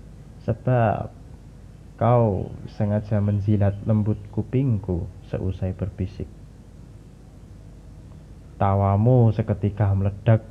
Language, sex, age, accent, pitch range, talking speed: Indonesian, male, 30-49, native, 100-125 Hz, 65 wpm